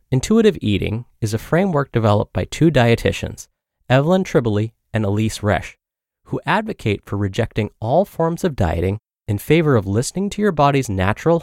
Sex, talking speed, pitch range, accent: male, 160 wpm, 105-155 Hz, American